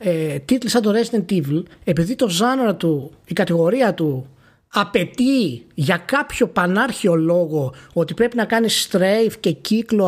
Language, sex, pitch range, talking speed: Greek, male, 170-240 Hz, 145 wpm